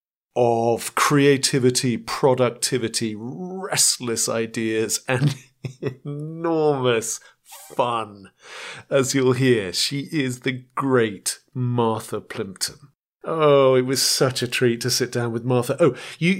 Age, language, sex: 40-59, English, male